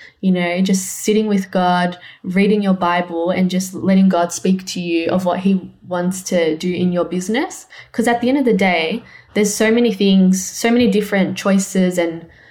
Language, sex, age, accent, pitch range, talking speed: English, female, 10-29, Australian, 180-200 Hz, 195 wpm